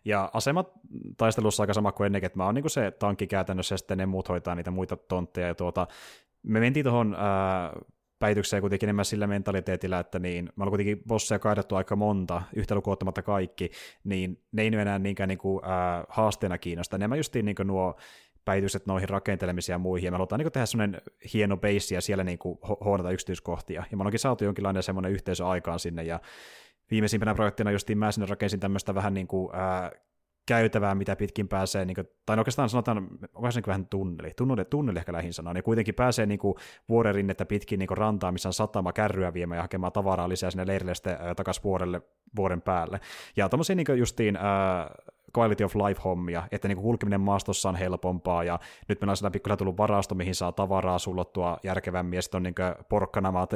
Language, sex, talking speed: Finnish, male, 190 wpm